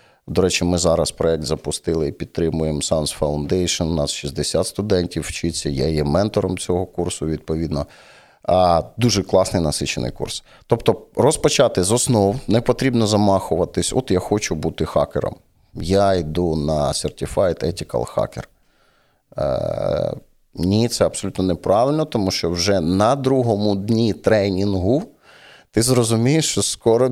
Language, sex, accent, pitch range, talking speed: Ukrainian, male, native, 90-120 Hz, 130 wpm